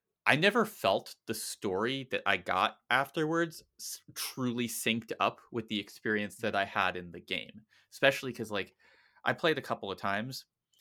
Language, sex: English, male